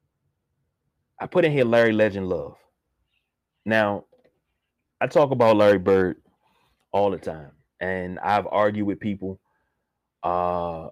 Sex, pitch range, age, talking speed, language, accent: male, 100-140 Hz, 30-49, 120 wpm, English, American